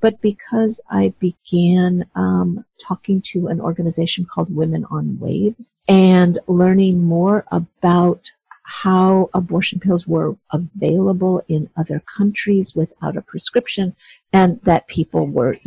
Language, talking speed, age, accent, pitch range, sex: English, 125 wpm, 50-69, American, 170-205 Hz, female